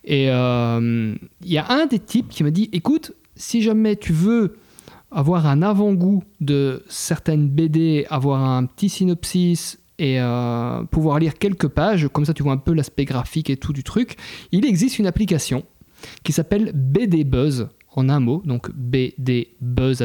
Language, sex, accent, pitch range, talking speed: French, male, French, 130-180 Hz, 170 wpm